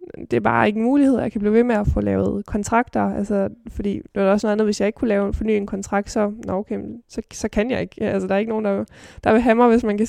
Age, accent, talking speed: 20-39, Danish, 320 wpm